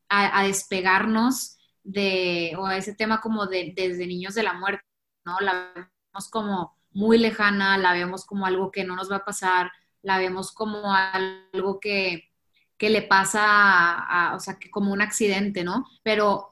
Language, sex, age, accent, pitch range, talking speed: Spanish, female, 20-39, Mexican, 190-220 Hz, 175 wpm